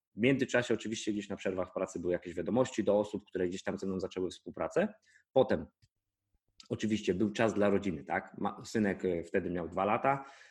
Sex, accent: male, native